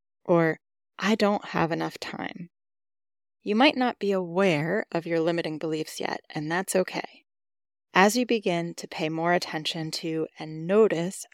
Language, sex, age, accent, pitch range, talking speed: English, female, 30-49, American, 160-205 Hz, 155 wpm